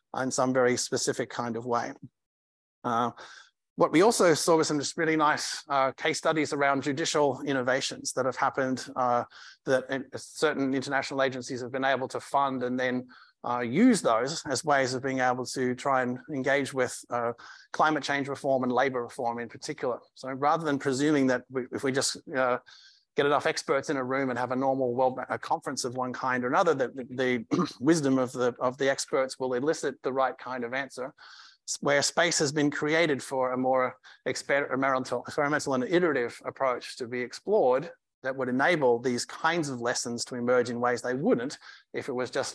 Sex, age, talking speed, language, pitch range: male, 30-49, 195 wpm, English, 125-140 Hz